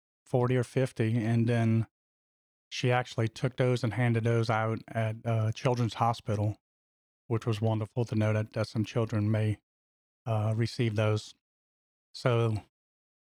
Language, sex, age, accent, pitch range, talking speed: English, male, 30-49, American, 110-120 Hz, 140 wpm